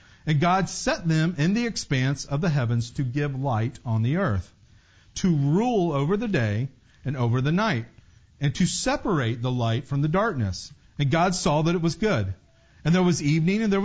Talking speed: 200 wpm